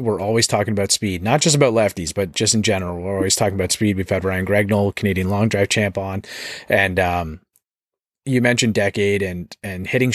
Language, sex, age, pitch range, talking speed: English, male, 30-49, 100-120 Hz, 205 wpm